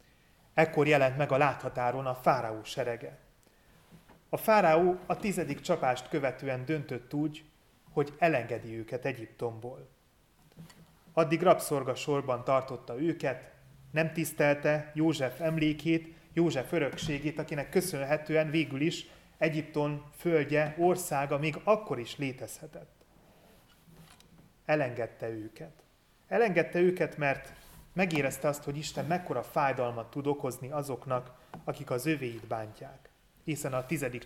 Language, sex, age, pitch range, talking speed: Hungarian, male, 30-49, 125-160 Hz, 110 wpm